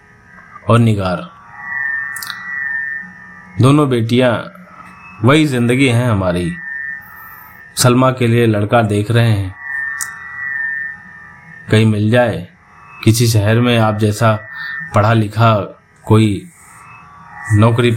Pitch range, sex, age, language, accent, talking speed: 110-150 Hz, male, 30-49, Hindi, native, 90 wpm